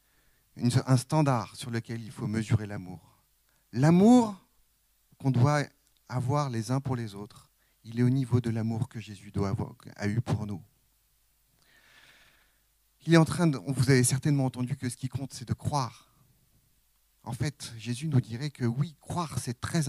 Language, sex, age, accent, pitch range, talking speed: French, male, 40-59, French, 115-140 Hz, 170 wpm